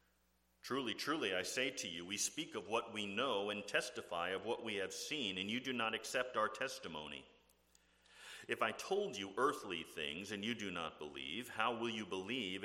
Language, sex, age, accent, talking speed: English, male, 40-59, American, 195 wpm